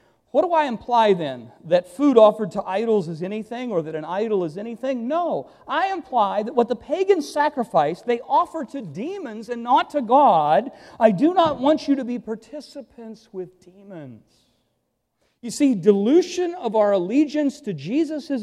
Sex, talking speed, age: male, 170 wpm, 50-69